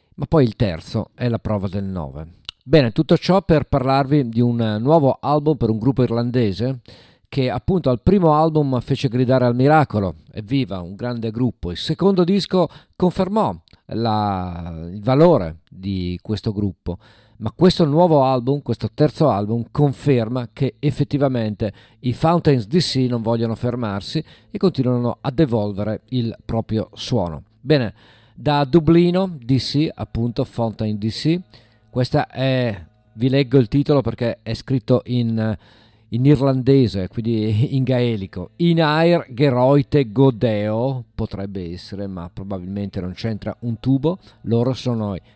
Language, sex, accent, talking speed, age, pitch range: Italian, male, native, 140 wpm, 50-69, 105-140 Hz